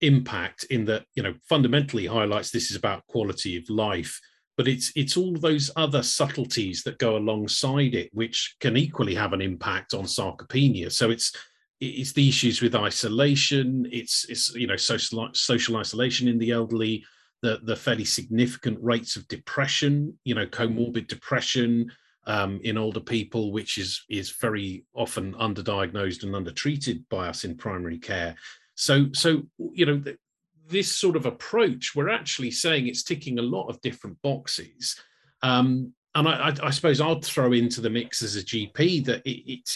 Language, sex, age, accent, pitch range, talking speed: English, male, 40-59, British, 110-135 Hz, 170 wpm